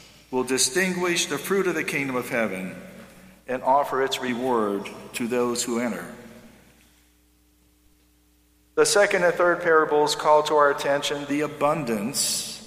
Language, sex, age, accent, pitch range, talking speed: English, male, 50-69, American, 115-150 Hz, 135 wpm